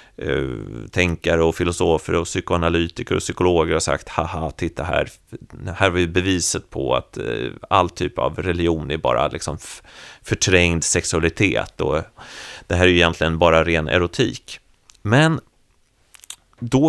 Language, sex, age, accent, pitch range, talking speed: Swedish, male, 30-49, native, 85-120 Hz, 145 wpm